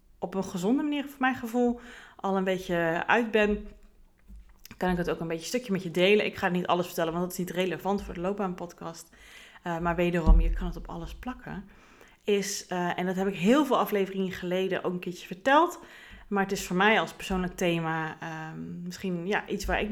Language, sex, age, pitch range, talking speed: Dutch, female, 30-49, 180-225 Hz, 225 wpm